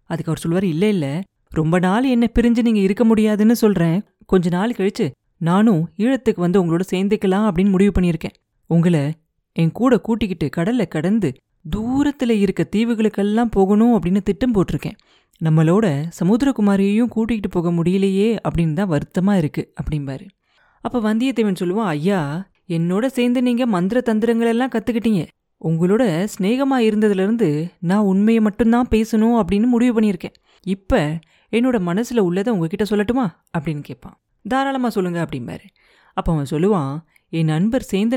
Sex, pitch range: female, 170-225 Hz